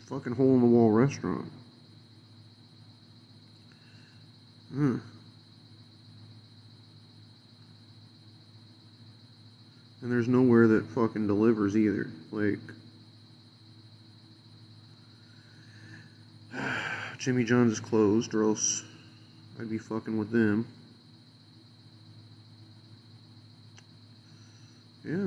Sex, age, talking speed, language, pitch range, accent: male, 40-59, 55 wpm, English, 115-120 Hz, American